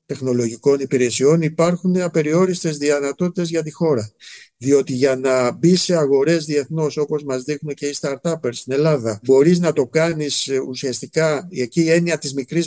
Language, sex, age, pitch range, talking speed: Greek, male, 60-79, 130-165 Hz, 155 wpm